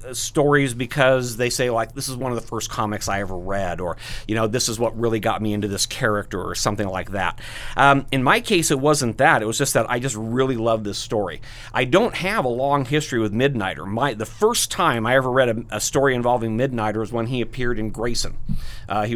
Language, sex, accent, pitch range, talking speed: English, male, American, 110-135 Hz, 240 wpm